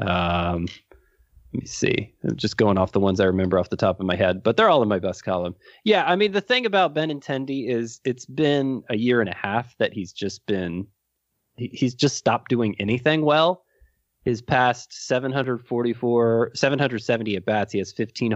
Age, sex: 20-39, male